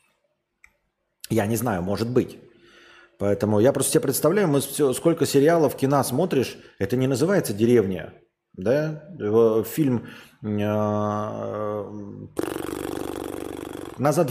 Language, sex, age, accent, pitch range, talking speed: Russian, male, 30-49, native, 110-155 Hz, 95 wpm